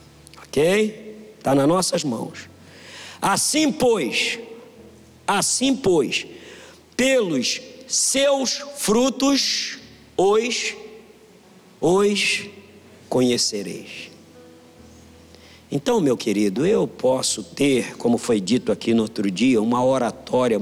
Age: 50-69